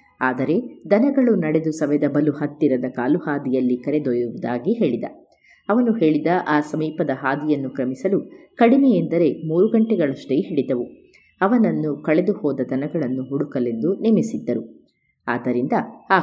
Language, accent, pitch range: Kannada, native, 140-200 Hz